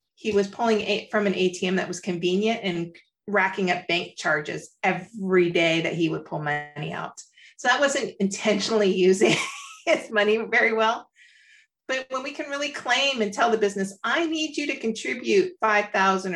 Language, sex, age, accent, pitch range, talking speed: English, female, 40-59, American, 185-225 Hz, 175 wpm